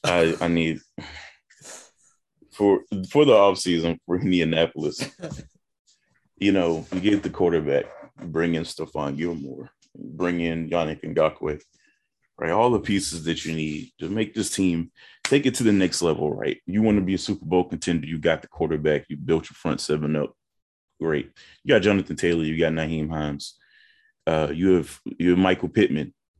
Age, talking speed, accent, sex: 30-49, 170 wpm, American, male